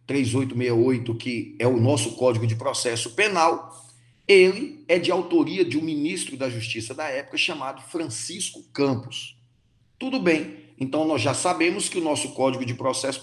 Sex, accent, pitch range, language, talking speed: male, Brazilian, 120-185 Hz, Portuguese, 160 wpm